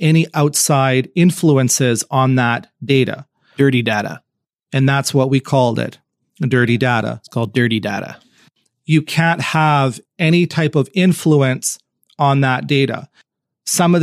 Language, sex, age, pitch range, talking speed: English, male, 40-59, 125-150 Hz, 135 wpm